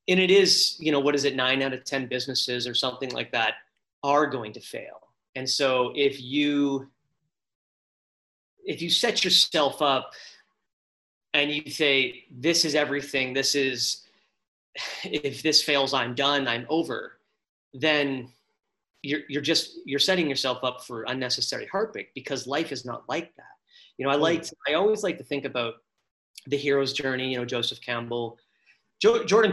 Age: 30-49